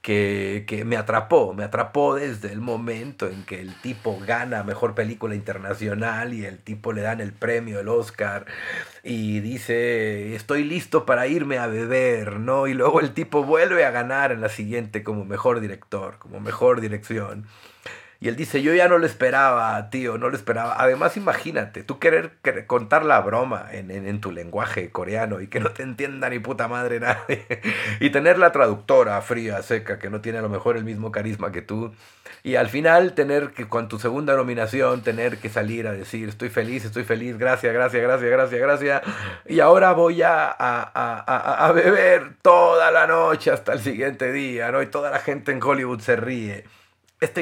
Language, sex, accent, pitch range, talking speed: Spanish, male, Mexican, 105-130 Hz, 190 wpm